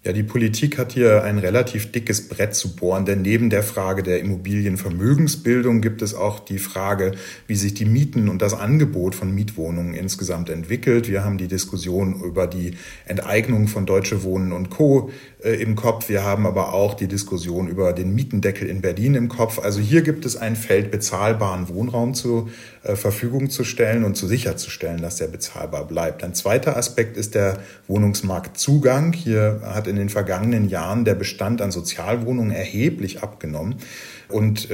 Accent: German